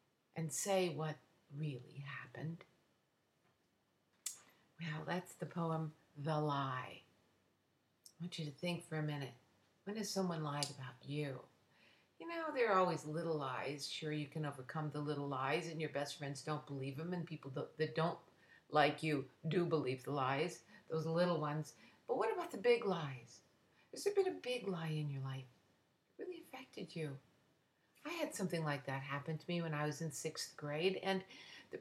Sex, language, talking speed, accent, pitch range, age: female, English, 175 wpm, American, 145-175 Hz, 50-69